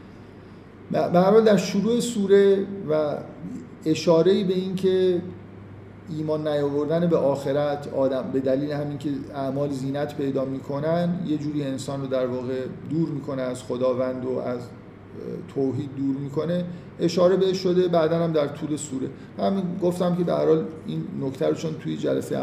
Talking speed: 145 wpm